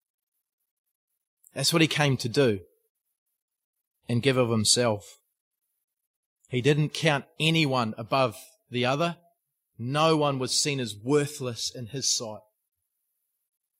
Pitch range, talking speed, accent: 125-170 Hz, 115 wpm, Australian